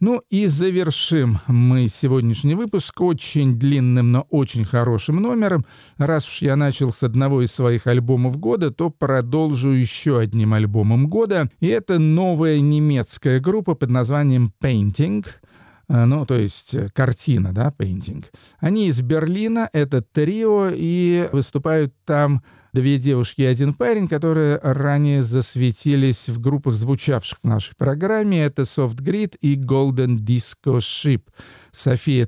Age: 40-59